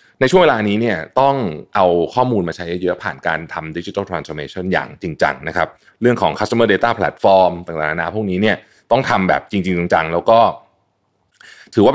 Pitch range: 80-110 Hz